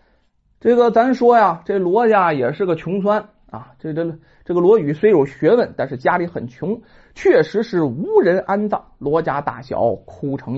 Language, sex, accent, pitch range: Chinese, male, native, 180-290 Hz